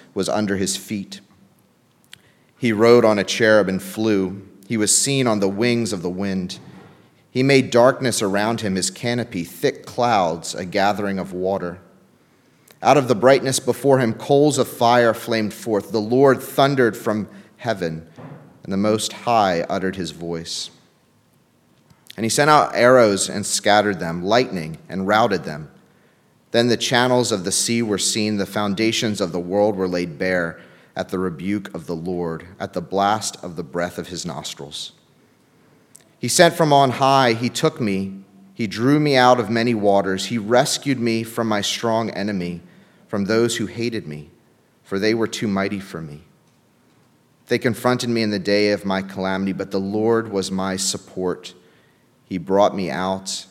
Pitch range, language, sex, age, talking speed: 95-115 Hz, English, male, 30-49, 170 wpm